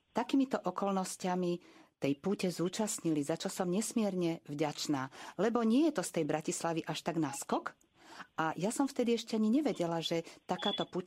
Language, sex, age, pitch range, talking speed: Slovak, female, 50-69, 150-205 Hz, 165 wpm